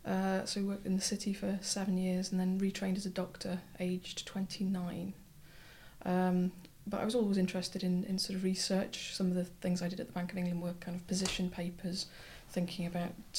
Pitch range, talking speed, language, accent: 180-195 Hz, 210 wpm, English, British